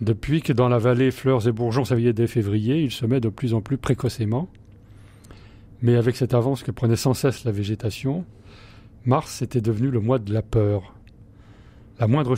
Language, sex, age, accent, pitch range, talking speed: French, male, 40-59, French, 110-130 Hz, 185 wpm